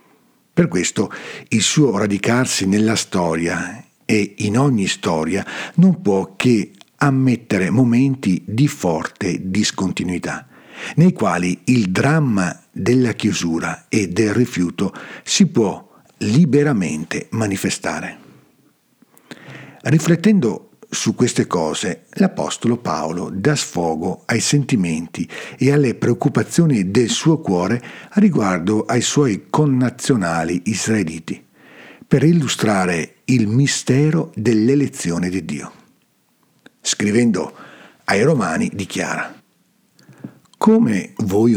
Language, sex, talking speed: Italian, male, 95 wpm